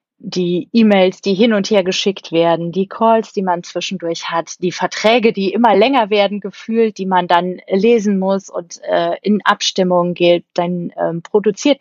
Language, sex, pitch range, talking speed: German, female, 175-215 Hz, 175 wpm